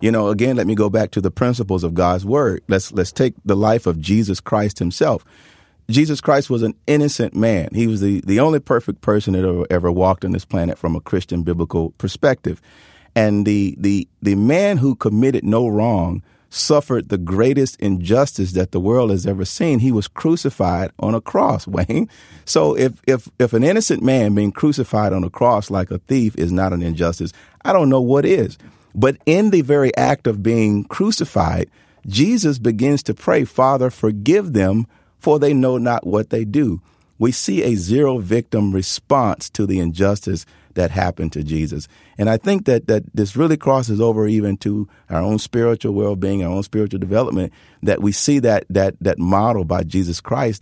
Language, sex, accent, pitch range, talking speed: English, male, American, 90-120 Hz, 190 wpm